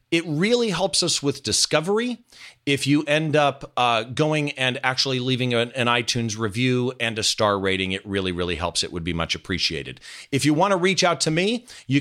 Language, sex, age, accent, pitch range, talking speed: English, male, 40-59, American, 110-150 Hz, 205 wpm